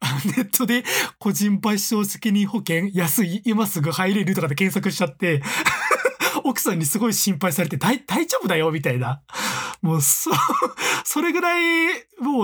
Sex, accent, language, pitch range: male, native, Japanese, 145-235 Hz